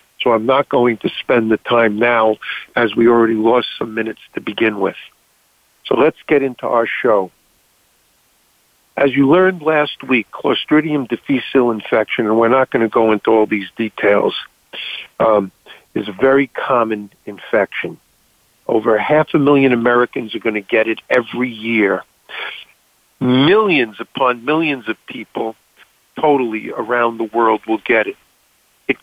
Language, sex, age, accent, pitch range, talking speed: English, male, 50-69, American, 115-145 Hz, 150 wpm